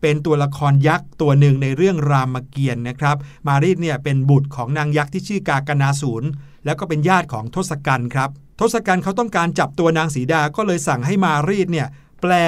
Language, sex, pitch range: Thai, male, 140-180 Hz